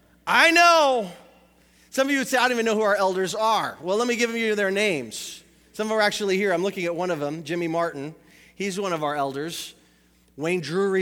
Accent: American